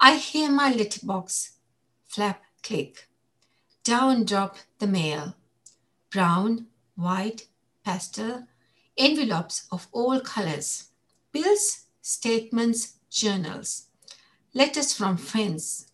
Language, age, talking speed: English, 60-79, 90 wpm